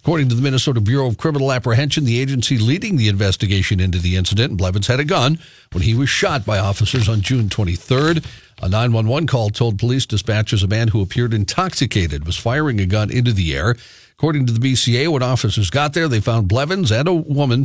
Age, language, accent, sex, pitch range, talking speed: 50-69, English, American, male, 105-130 Hz, 205 wpm